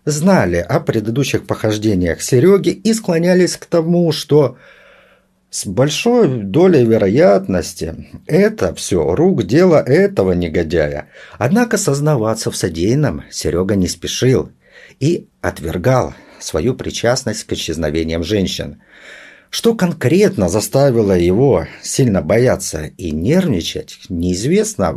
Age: 50-69